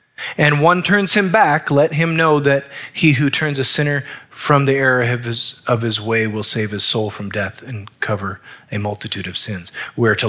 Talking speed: 210 wpm